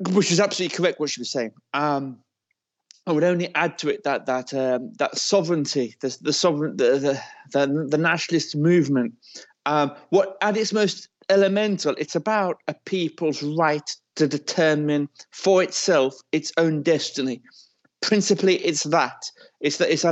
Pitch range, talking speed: 135-170 Hz, 155 wpm